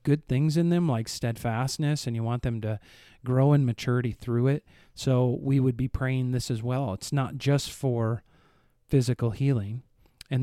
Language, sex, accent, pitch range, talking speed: English, male, American, 120-140 Hz, 180 wpm